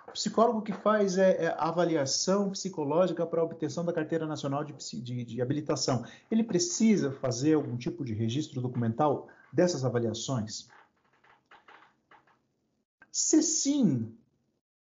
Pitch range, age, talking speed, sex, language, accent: 130-195 Hz, 50-69, 115 wpm, male, Portuguese, Brazilian